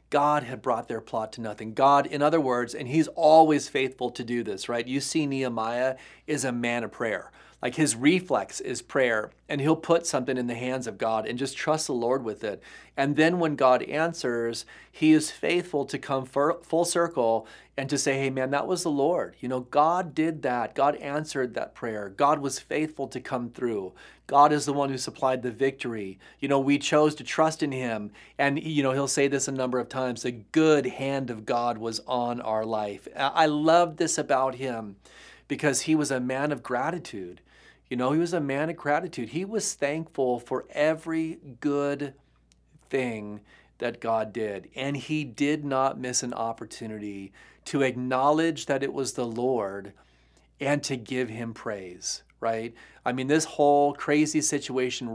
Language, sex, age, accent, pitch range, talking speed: English, male, 30-49, American, 120-150 Hz, 190 wpm